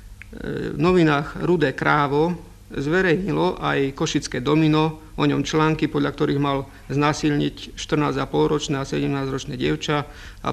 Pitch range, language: 130-150 Hz, Czech